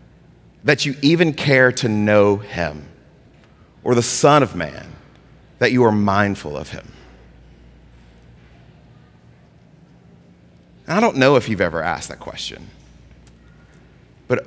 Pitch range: 95-140 Hz